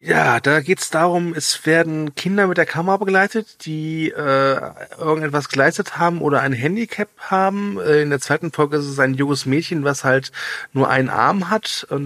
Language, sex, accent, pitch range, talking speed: German, male, German, 140-175 Hz, 185 wpm